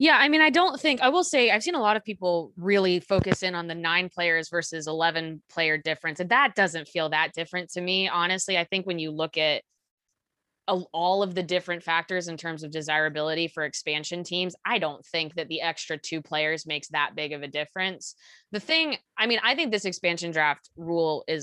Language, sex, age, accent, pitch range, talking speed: English, female, 20-39, American, 160-195 Hz, 220 wpm